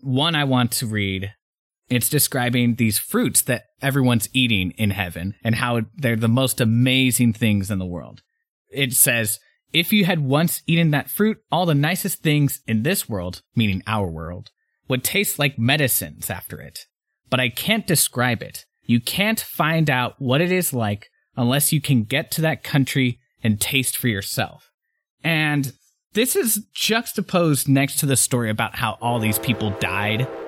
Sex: male